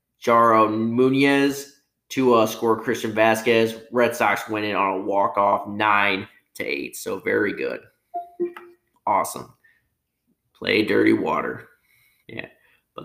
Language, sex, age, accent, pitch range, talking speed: English, male, 20-39, American, 110-135 Hz, 110 wpm